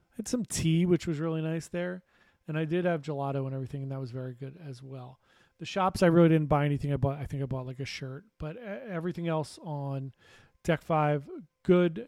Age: 40-59